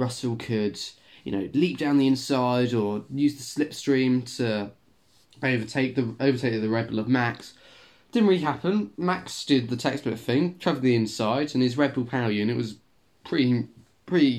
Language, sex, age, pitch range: English, male, 20-39, 110-135 Hz